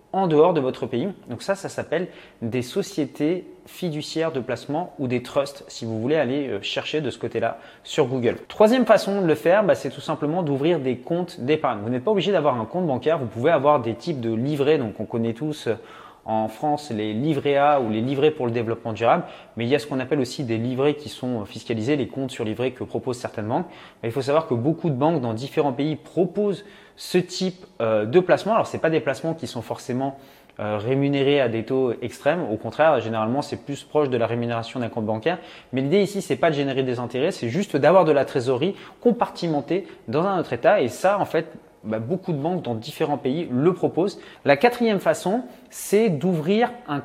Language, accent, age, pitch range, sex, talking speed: French, French, 20-39, 125-175 Hz, male, 225 wpm